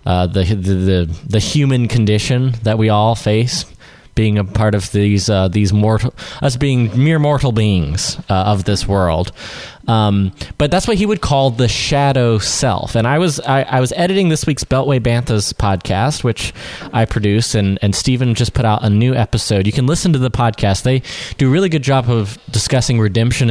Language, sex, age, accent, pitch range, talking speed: English, male, 20-39, American, 100-125 Hz, 195 wpm